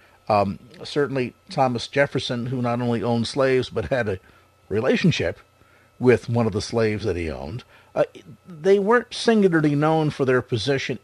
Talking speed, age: 160 wpm, 50-69